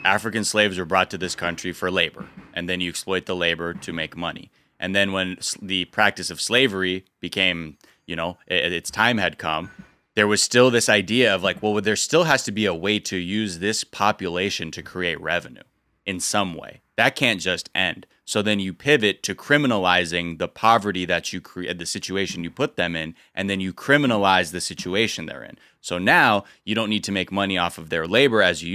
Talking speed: 210 wpm